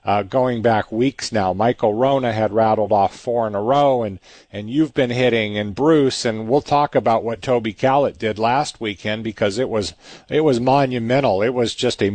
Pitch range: 110-135 Hz